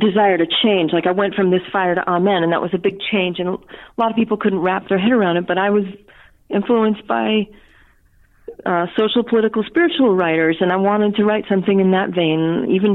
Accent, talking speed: American, 220 wpm